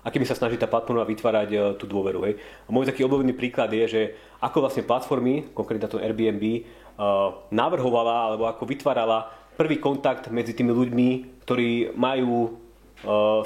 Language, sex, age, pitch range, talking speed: Slovak, male, 30-49, 110-125 Hz, 150 wpm